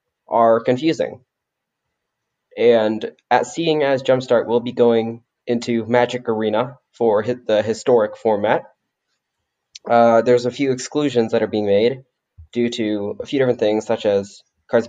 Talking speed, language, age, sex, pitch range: 145 wpm, English, 20-39, male, 105-125 Hz